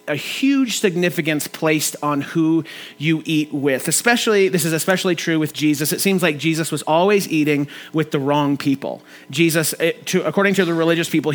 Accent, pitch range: American, 150-180 Hz